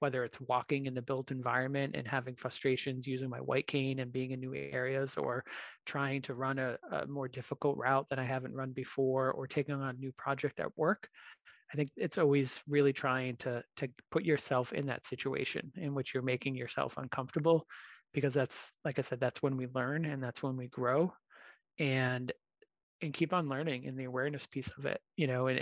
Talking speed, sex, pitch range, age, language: 205 wpm, male, 130-145 Hz, 30-49, English